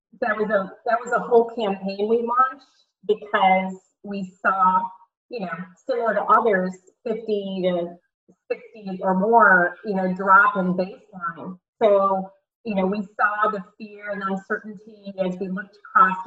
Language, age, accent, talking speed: English, 30-49, American, 150 wpm